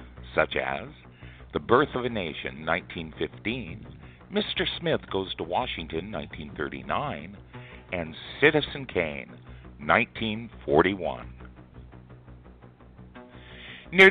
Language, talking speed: English, 80 wpm